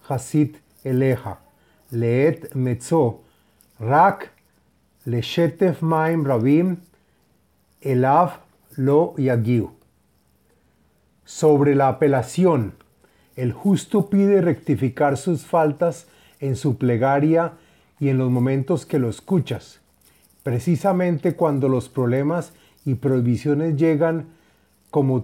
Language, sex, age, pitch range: Spanish, male, 30-49, 120-160 Hz